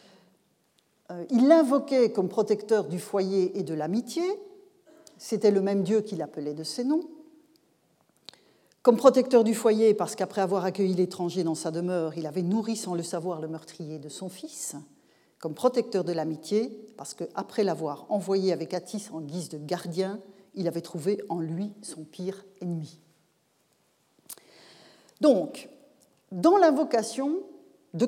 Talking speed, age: 145 wpm, 40-59